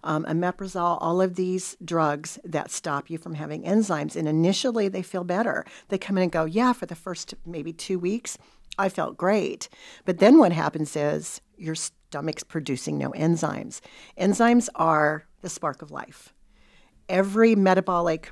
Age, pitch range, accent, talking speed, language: 50-69, 160-190 Hz, American, 165 wpm, English